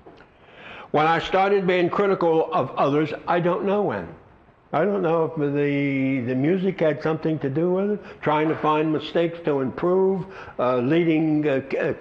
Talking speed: 165 wpm